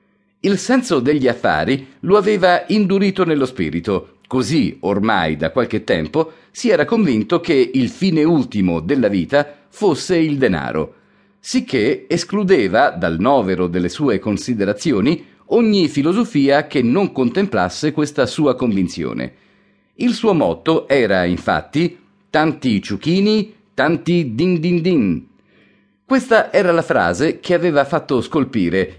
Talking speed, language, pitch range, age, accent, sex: 125 wpm, Italian, 115-185 Hz, 40-59, native, male